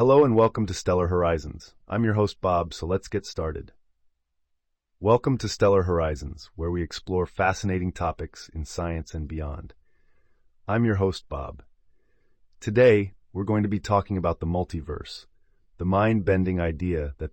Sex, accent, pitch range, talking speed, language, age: male, American, 80-95 Hz, 150 wpm, English, 30-49